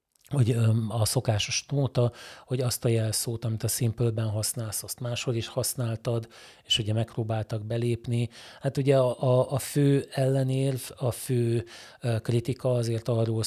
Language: Hungarian